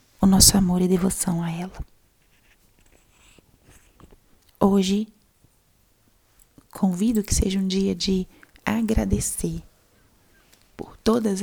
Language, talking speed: Portuguese, 90 wpm